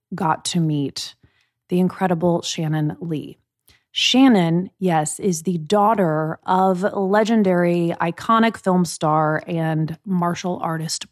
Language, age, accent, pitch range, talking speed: English, 20-39, American, 165-220 Hz, 110 wpm